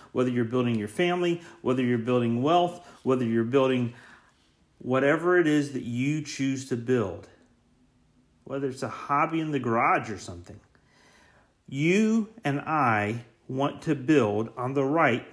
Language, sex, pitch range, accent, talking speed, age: English, male, 115-160 Hz, American, 150 wpm, 40-59